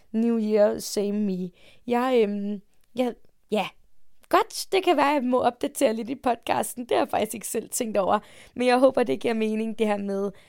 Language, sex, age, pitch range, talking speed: English, female, 20-39, 205-245 Hz, 205 wpm